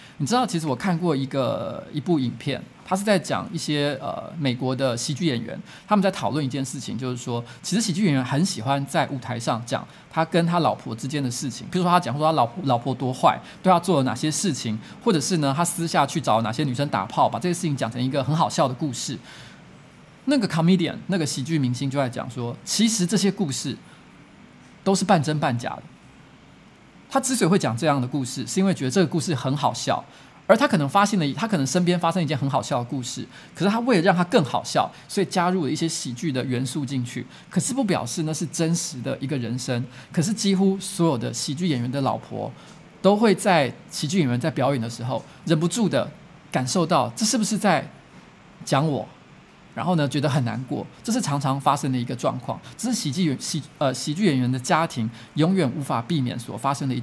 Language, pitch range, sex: Chinese, 130-180 Hz, male